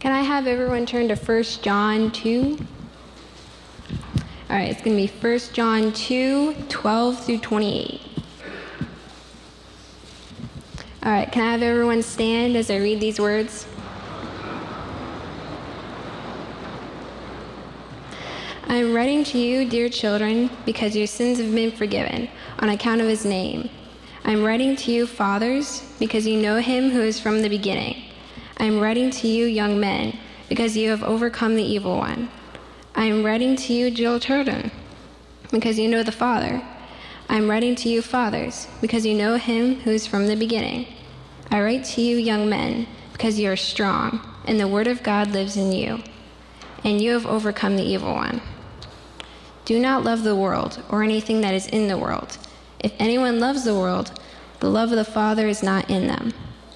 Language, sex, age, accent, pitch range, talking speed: English, female, 10-29, American, 215-240 Hz, 165 wpm